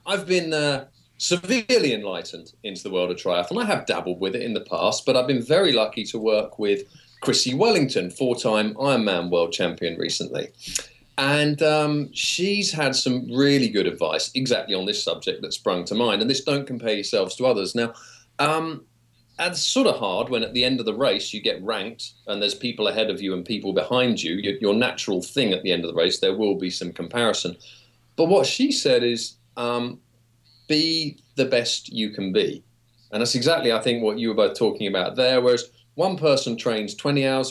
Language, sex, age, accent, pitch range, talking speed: English, male, 40-59, British, 115-145 Hz, 205 wpm